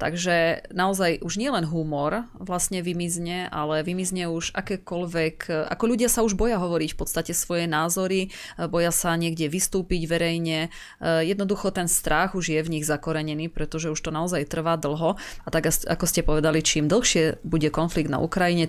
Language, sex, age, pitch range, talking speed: Slovak, female, 20-39, 160-190 Hz, 165 wpm